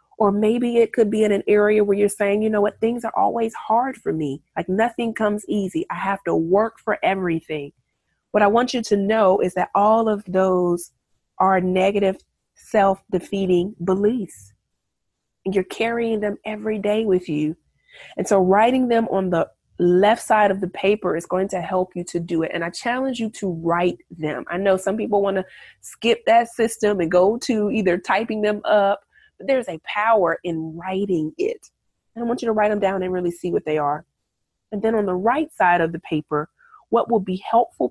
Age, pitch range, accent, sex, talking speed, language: 30-49, 175-220 Hz, American, female, 205 wpm, English